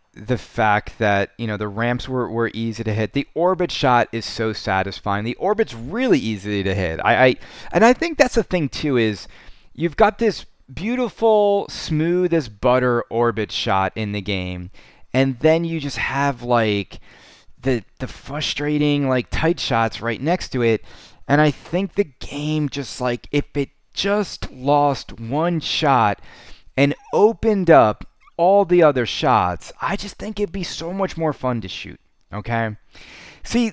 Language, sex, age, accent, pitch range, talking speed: English, male, 30-49, American, 110-175 Hz, 165 wpm